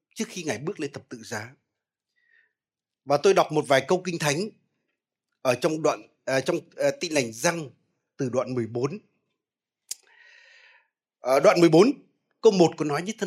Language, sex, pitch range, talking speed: Vietnamese, male, 140-195 Hz, 165 wpm